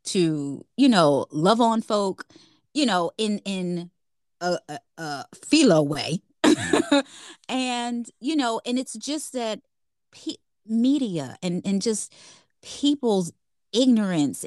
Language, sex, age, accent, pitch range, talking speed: English, female, 20-39, American, 175-245 Hz, 110 wpm